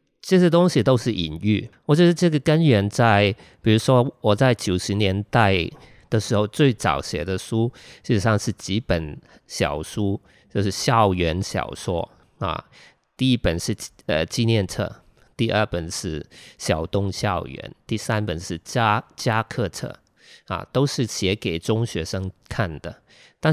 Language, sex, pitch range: Chinese, male, 95-125 Hz